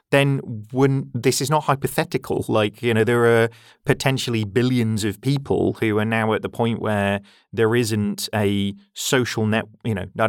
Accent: British